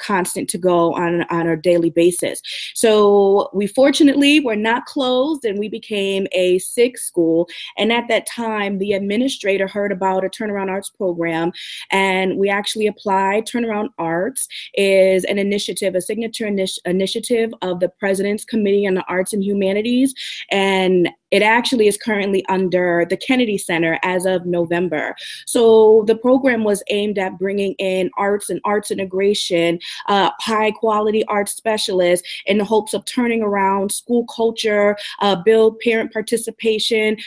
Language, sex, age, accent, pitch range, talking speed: English, female, 20-39, American, 190-225 Hz, 155 wpm